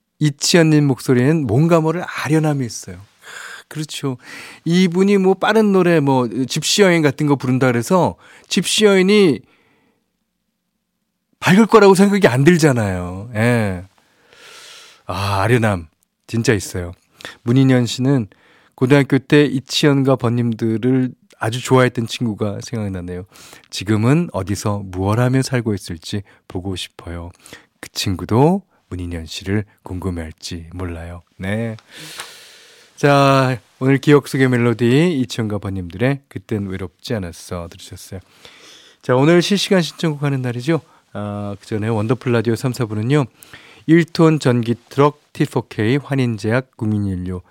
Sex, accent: male, native